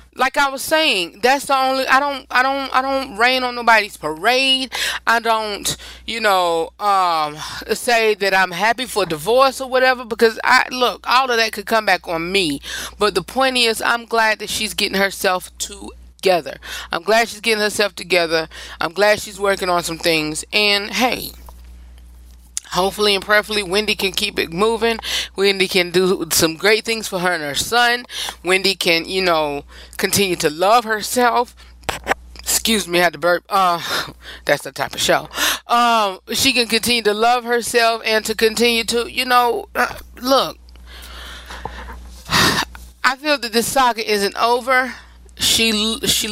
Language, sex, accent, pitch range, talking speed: English, female, American, 175-240 Hz, 170 wpm